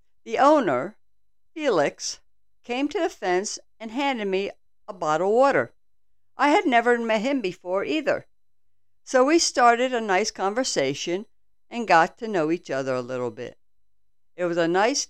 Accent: American